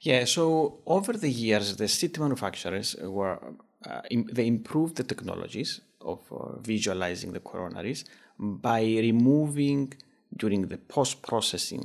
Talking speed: 130 wpm